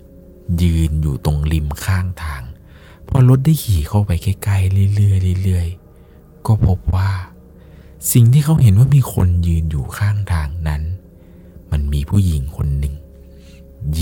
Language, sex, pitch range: Thai, male, 80-105 Hz